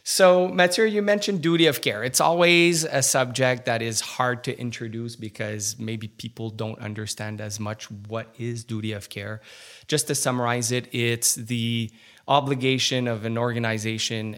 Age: 20-39